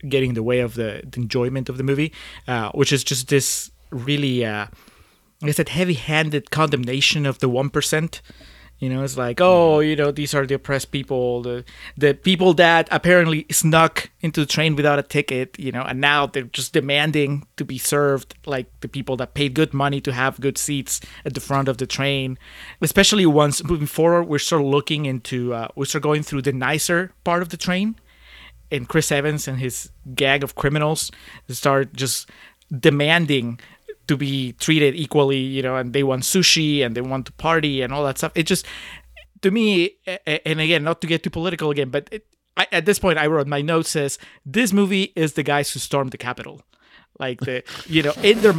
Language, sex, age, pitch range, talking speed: English, male, 30-49, 135-165 Hz, 205 wpm